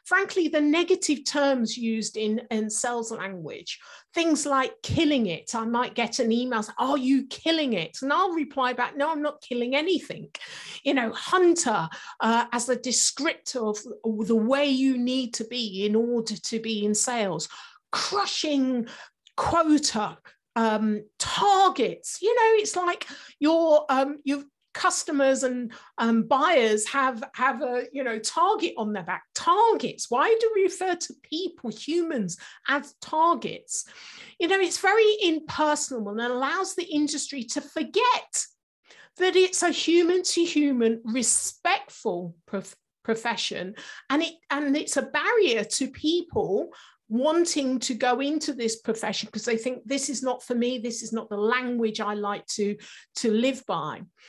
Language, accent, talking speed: English, British, 150 wpm